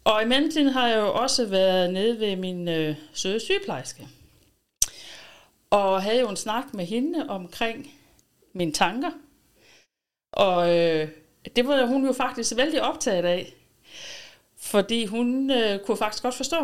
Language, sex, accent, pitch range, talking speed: Danish, female, native, 185-245 Hz, 150 wpm